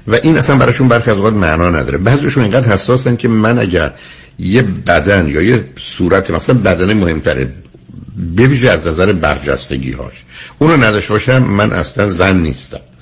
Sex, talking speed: male, 145 wpm